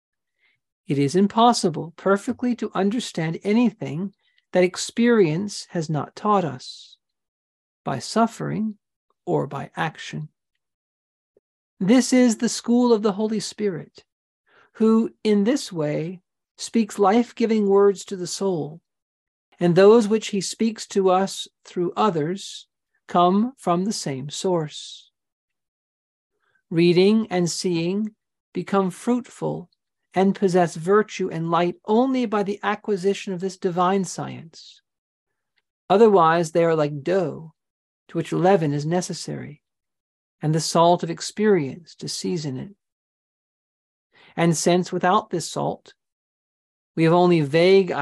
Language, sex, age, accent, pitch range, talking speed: English, male, 50-69, American, 165-210 Hz, 120 wpm